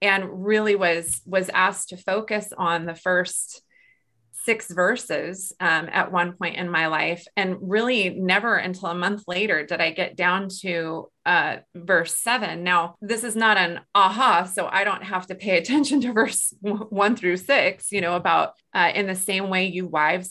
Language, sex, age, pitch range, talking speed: English, female, 30-49, 175-205 Hz, 185 wpm